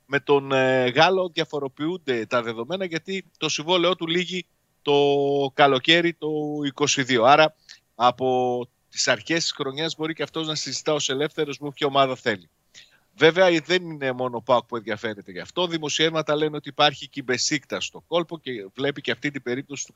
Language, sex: Greek, male